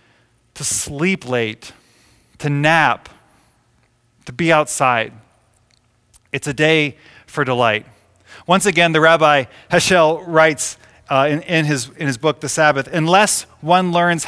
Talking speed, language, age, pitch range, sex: 120 wpm, English, 30-49, 120-165 Hz, male